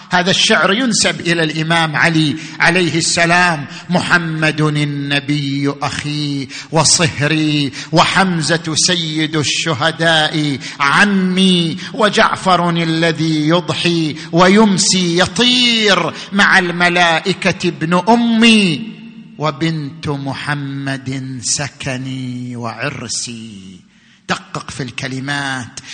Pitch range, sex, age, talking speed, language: 145-185 Hz, male, 50-69, 75 wpm, Arabic